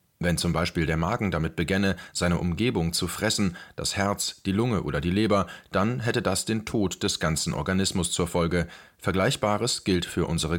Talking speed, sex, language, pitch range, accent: 180 wpm, male, German, 90-110 Hz, German